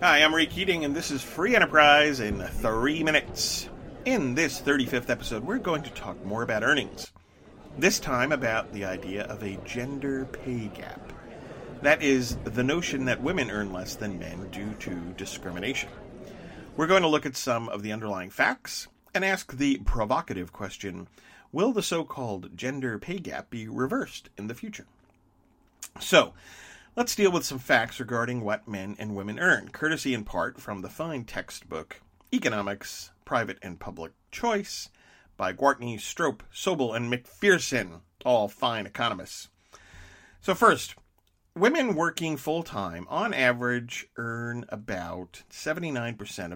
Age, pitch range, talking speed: 40-59, 100-145 Hz, 150 wpm